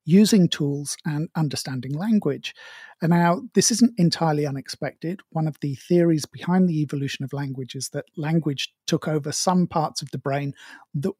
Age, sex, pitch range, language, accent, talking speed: 50-69, male, 145-180 Hz, English, British, 165 wpm